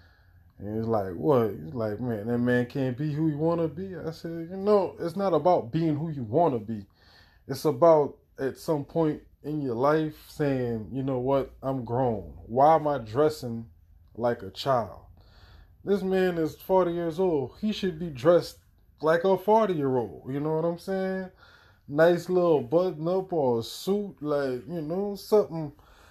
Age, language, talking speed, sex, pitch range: 20-39, English, 180 wpm, male, 95-160 Hz